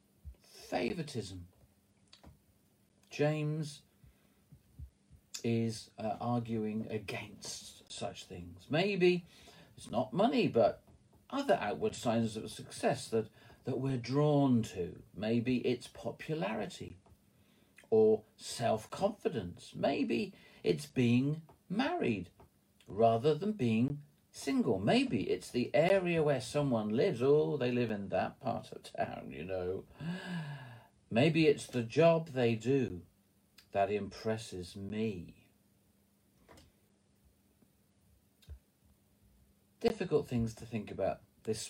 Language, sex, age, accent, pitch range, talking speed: English, male, 50-69, British, 100-145 Hz, 100 wpm